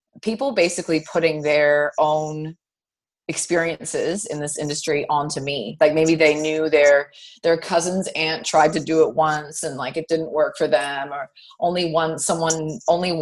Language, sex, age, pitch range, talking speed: English, female, 30-49, 150-175 Hz, 165 wpm